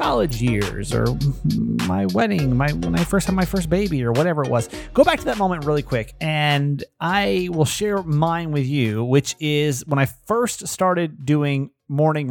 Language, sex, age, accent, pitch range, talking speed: English, male, 30-49, American, 135-165 Hz, 190 wpm